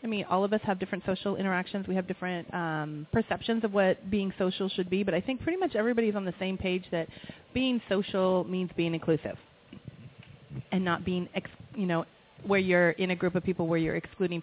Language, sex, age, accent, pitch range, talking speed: English, female, 30-49, American, 165-205 Hz, 220 wpm